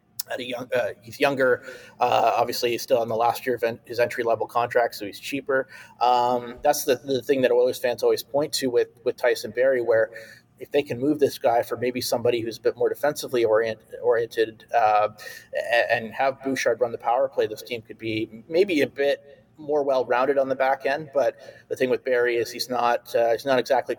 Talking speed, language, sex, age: 215 wpm, English, male, 30-49